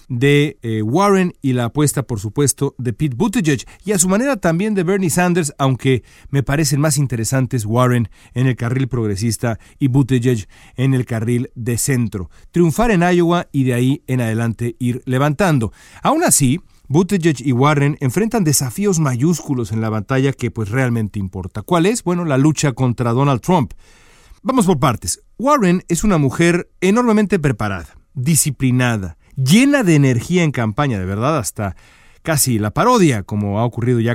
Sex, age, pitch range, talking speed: male, 40-59, 115-160 Hz, 165 wpm